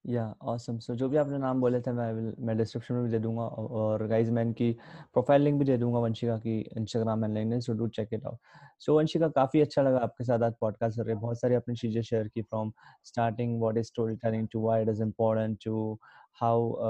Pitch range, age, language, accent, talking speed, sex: 115-125 Hz, 20-39, Hindi, native, 230 wpm, male